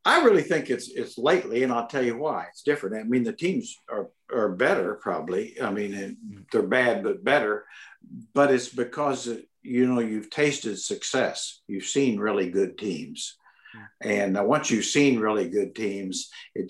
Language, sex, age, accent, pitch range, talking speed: English, male, 60-79, American, 95-125 Hz, 175 wpm